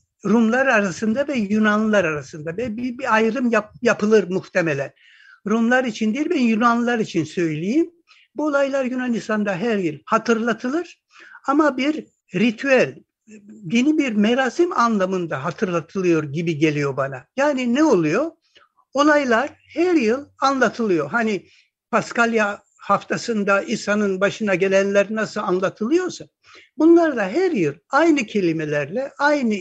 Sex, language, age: male, Turkish, 60-79